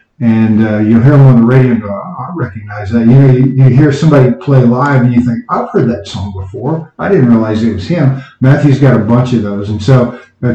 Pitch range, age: 115-140 Hz, 50-69